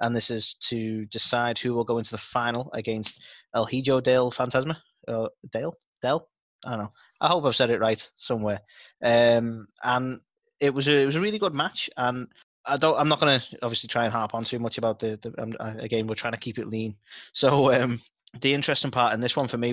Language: English